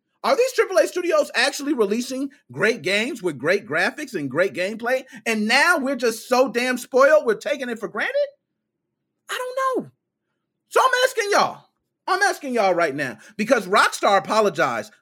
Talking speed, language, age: 165 wpm, English, 30-49